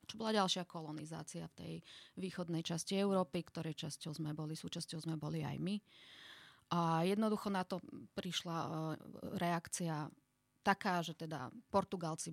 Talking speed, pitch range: 140 wpm, 160-180 Hz